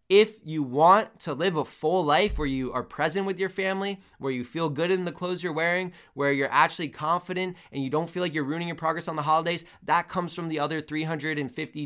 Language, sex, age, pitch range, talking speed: English, male, 20-39, 125-160 Hz, 235 wpm